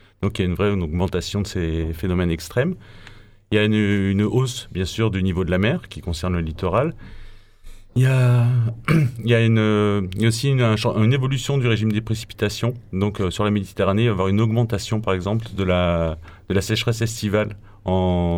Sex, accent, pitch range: male, French, 95-115 Hz